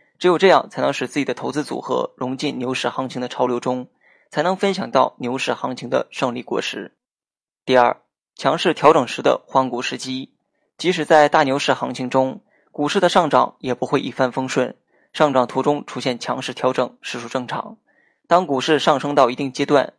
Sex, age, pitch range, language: male, 20-39, 125-150 Hz, Chinese